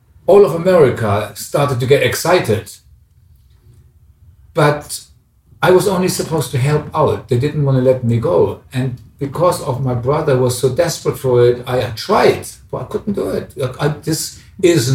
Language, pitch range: English, 125-160 Hz